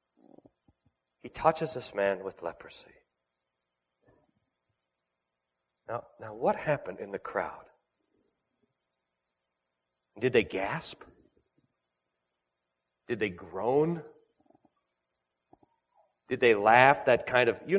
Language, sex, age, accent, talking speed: English, male, 40-59, American, 90 wpm